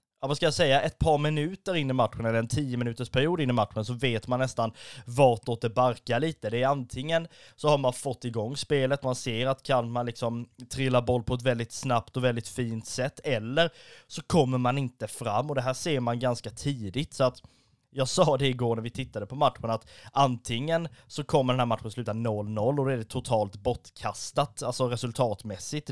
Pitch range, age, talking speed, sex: 115-140 Hz, 20-39, 215 wpm, male